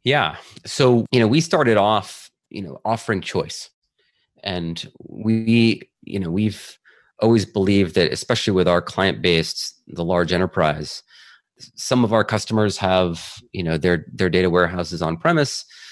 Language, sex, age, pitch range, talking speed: English, male, 30-49, 85-110 Hz, 145 wpm